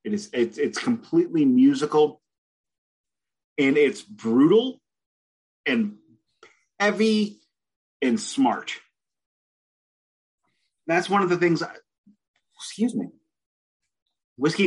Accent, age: American, 30-49